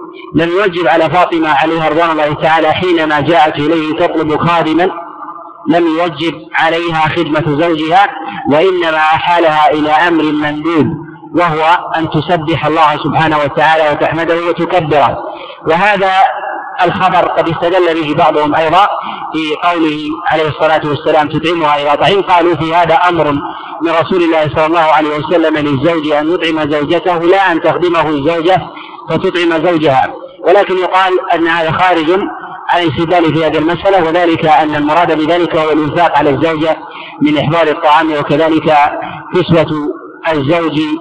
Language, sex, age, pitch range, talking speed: Arabic, male, 50-69, 155-175 Hz, 135 wpm